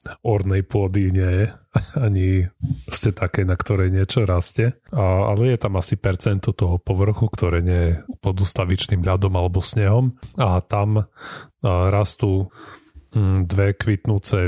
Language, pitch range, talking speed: Slovak, 90-110 Hz, 125 wpm